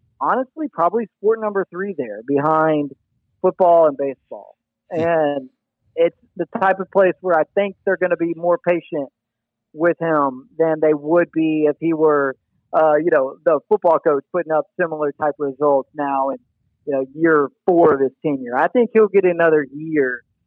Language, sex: English, male